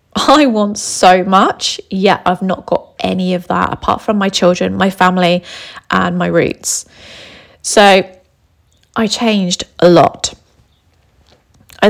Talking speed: 130 wpm